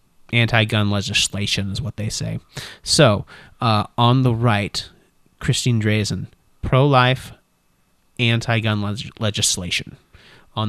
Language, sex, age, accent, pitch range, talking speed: English, male, 30-49, American, 105-135 Hz, 120 wpm